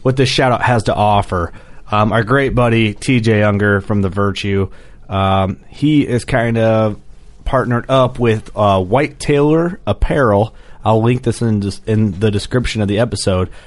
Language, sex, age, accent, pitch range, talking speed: English, male, 30-49, American, 100-120 Hz, 165 wpm